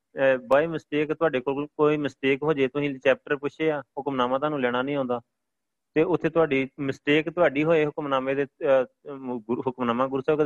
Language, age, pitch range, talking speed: Punjabi, 30-49, 120-140 Hz, 155 wpm